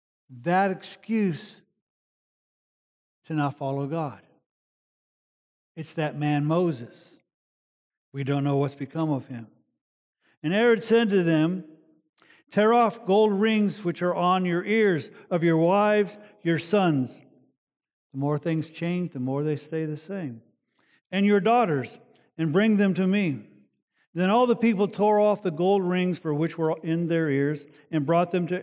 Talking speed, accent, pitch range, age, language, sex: 155 wpm, American, 150-195 Hz, 50-69, English, male